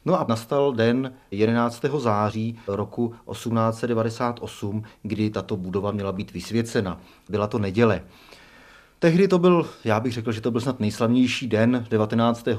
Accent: native